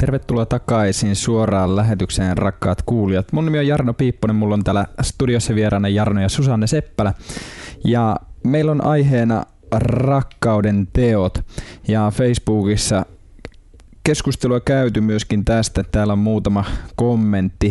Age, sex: 20-39, male